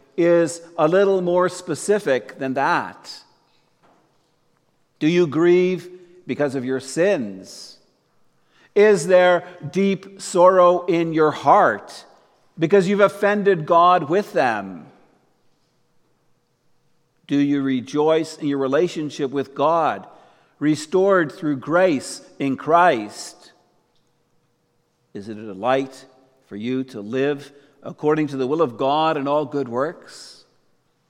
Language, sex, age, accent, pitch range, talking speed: English, male, 50-69, American, 150-190 Hz, 110 wpm